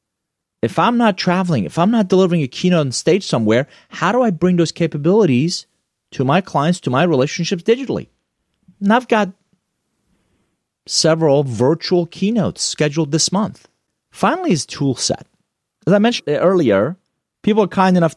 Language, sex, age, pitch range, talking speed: English, male, 30-49, 140-190 Hz, 155 wpm